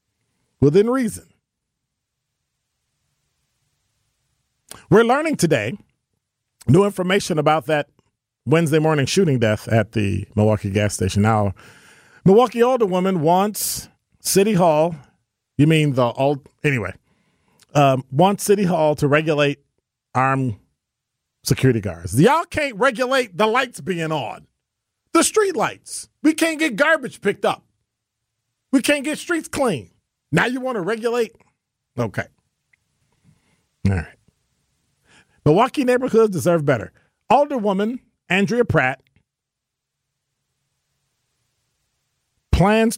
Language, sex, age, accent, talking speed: English, male, 40-59, American, 105 wpm